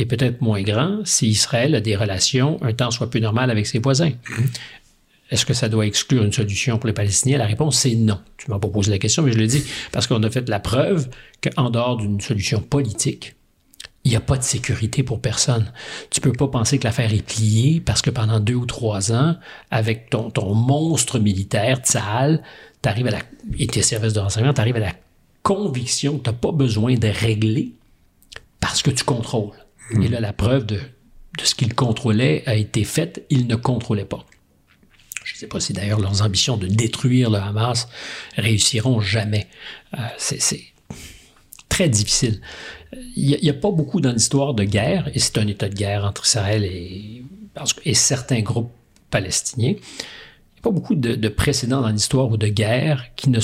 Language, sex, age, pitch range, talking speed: French, male, 50-69, 110-135 Hz, 195 wpm